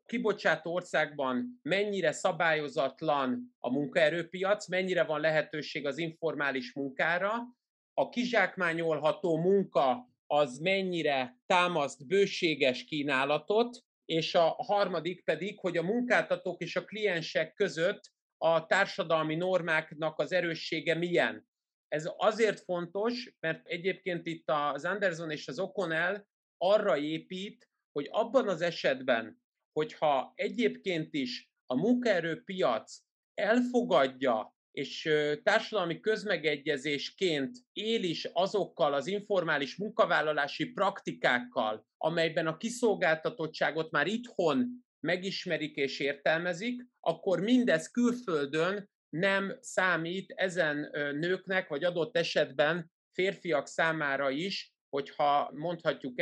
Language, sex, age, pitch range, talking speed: Hungarian, male, 30-49, 155-195 Hz, 100 wpm